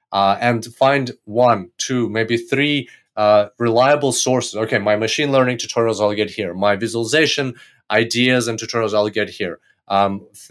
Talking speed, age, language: 155 wpm, 20-39, English